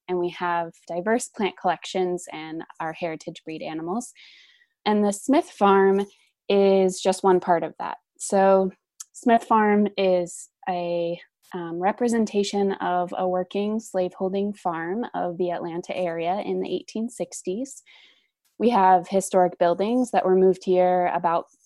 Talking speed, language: 135 wpm, English